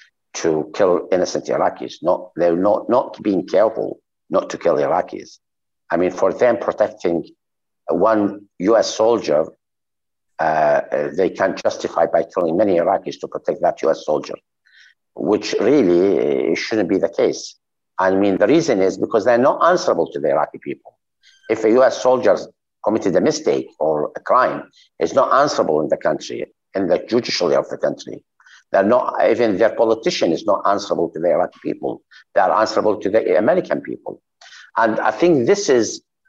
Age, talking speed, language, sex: 60-79, 165 wpm, English, male